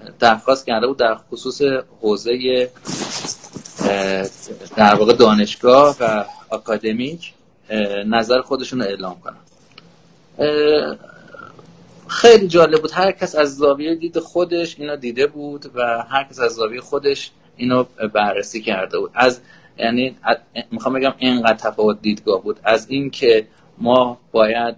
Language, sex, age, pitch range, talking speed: Persian, male, 30-49, 115-165 Hz, 120 wpm